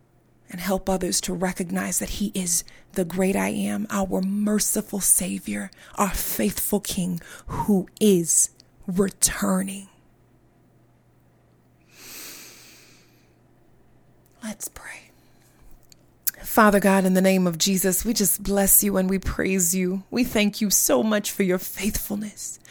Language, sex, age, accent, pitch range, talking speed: English, female, 30-49, American, 185-210 Hz, 120 wpm